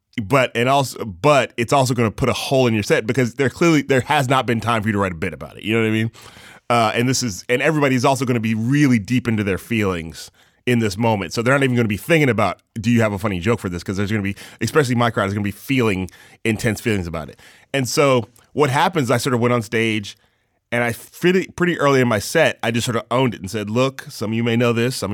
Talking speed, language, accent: 285 wpm, English, American